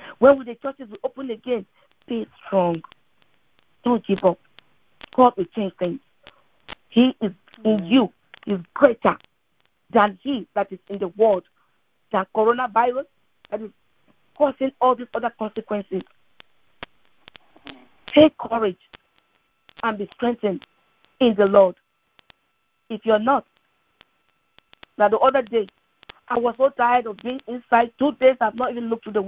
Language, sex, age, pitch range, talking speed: English, female, 40-59, 205-245 Hz, 140 wpm